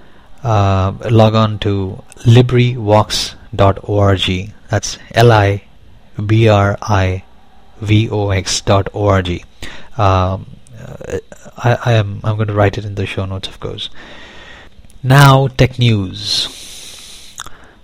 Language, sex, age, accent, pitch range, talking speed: English, male, 30-49, Indian, 95-115 Hz, 75 wpm